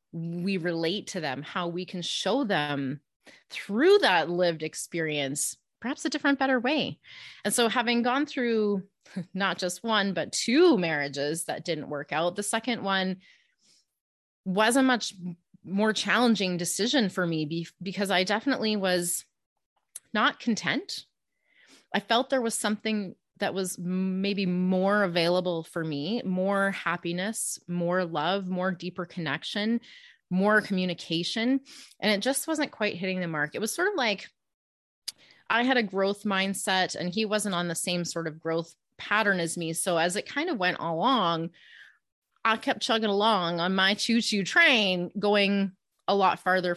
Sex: female